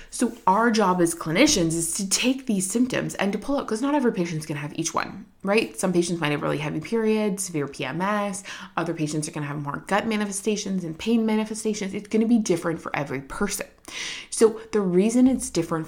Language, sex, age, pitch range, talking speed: English, female, 20-39, 165-210 Hz, 220 wpm